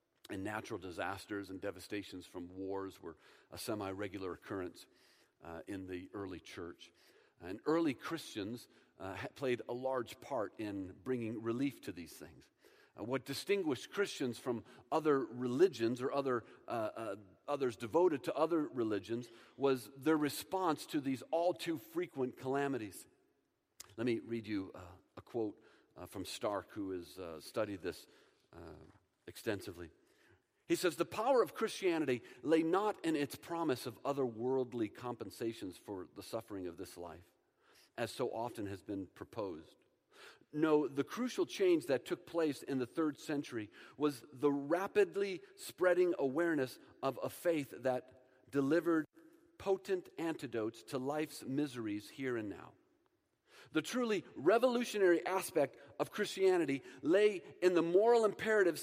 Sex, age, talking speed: male, 50-69, 140 wpm